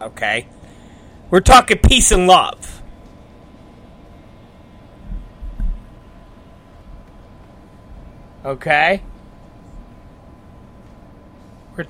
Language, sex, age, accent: English, male, 30-49, American